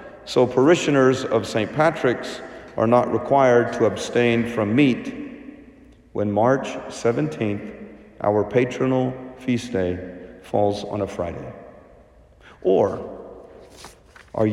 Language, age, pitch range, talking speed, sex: English, 50-69, 115-170 Hz, 105 wpm, male